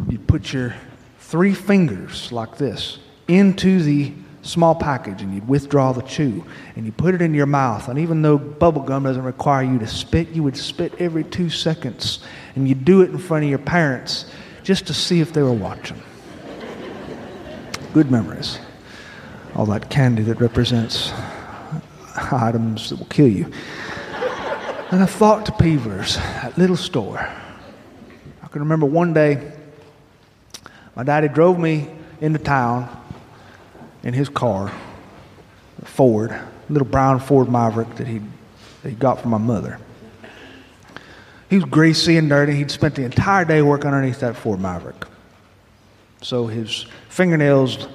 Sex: male